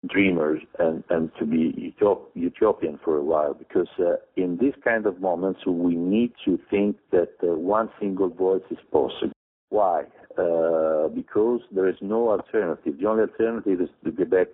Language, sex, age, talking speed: English, male, 60-79, 170 wpm